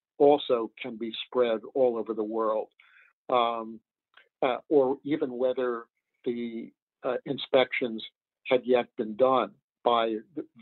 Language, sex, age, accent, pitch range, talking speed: English, male, 50-69, American, 115-140 Hz, 125 wpm